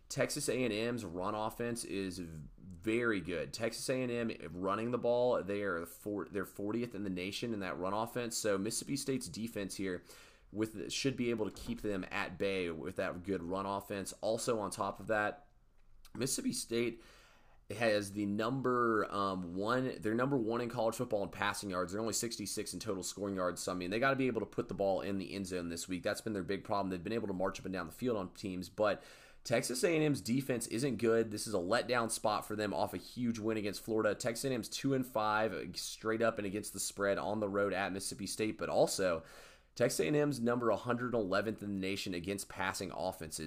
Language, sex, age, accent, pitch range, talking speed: English, male, 30-49, American, 95-115 Hz, 210 wpm